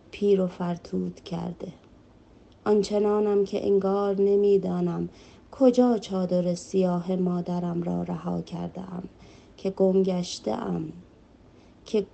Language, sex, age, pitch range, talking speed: Persian, female, 30-49, 180-195 Hz, 100 wpm